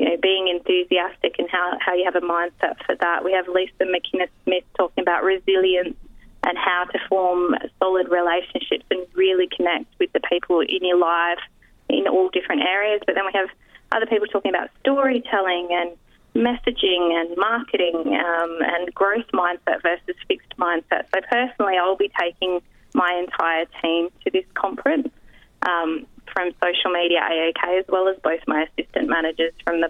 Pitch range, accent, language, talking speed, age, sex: 175-230 Hz, Australian, English, 170 wpm, 20-39, female